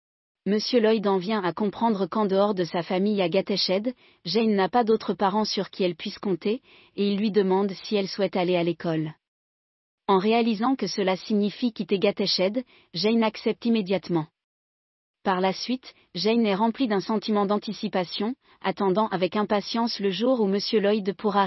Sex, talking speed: female, 170 wpm